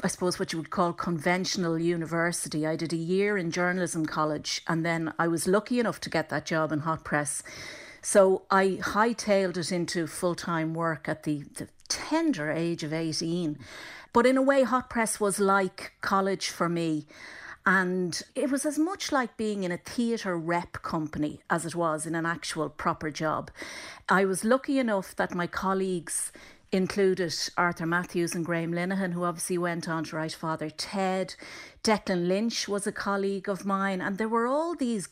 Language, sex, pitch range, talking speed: English, female, 165-200 Hz, 185 wpm